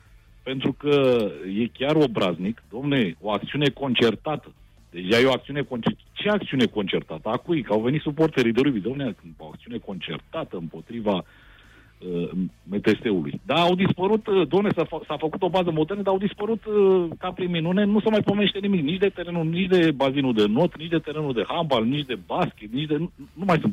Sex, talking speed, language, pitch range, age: male, 190 wpm, Romanian, 110-170 Hz, 50-69